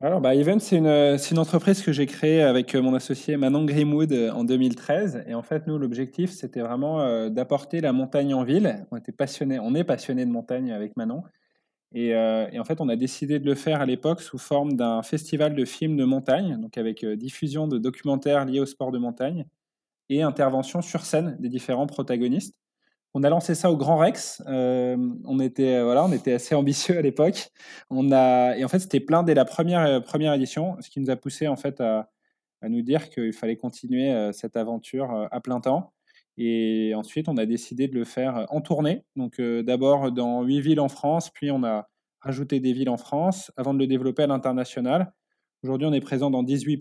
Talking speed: 210 wpm